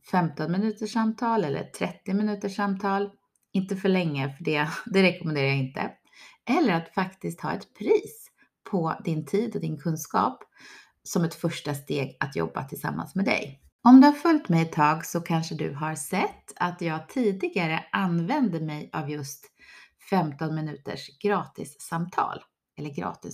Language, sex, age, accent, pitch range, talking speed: Swedish, female, 30-49, native, 155-210 Hz, 160 wpm